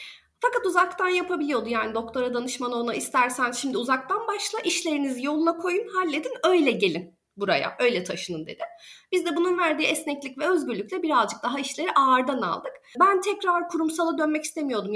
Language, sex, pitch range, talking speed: Turkish, female, 240-345 Hz, 150 wpm